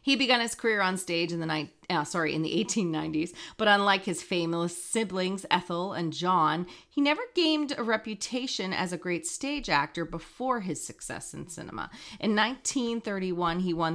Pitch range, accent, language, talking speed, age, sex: 160-205 Hz, American, English, 160 wpm, 40-59, female